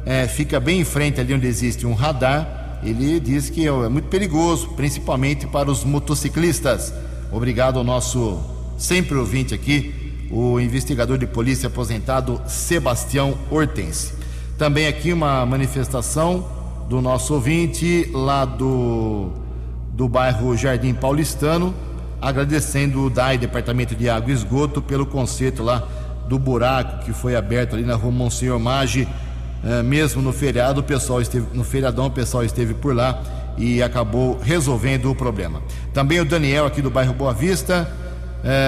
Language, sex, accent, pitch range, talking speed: English, male, Brazilian, 120-145 Hz, 150 wpm